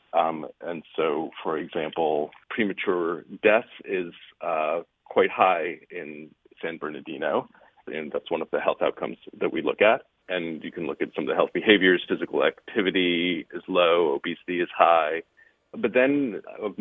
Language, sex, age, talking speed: English, male, 40-59, 160 wpm